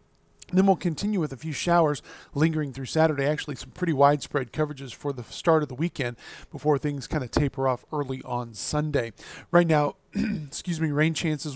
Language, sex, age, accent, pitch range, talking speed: English, male, 40-59, American, 135-165 Hz, 185 wpm